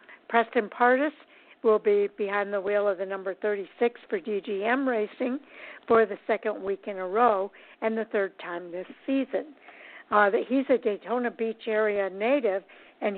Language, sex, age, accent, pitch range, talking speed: English, female, 60-79, American, 200-250 Hz, 160 wpm